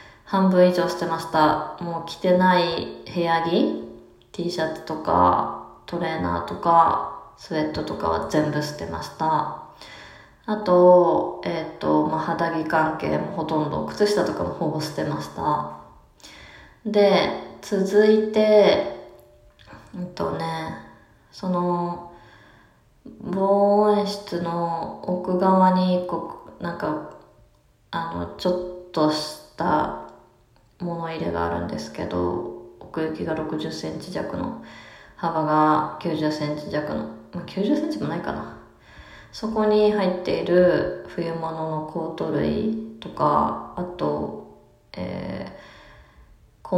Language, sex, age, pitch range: Japanese, female, 20-39, 135-185 Hz